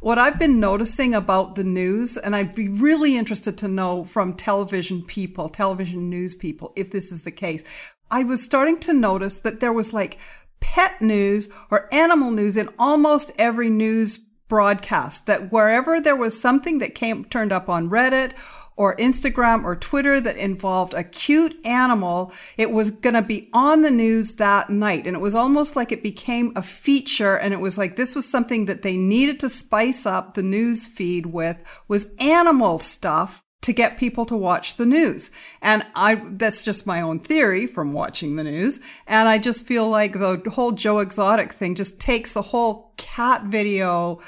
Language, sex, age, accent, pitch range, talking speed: English, female, 50-69, American, 190-245 Hz, 185 wpm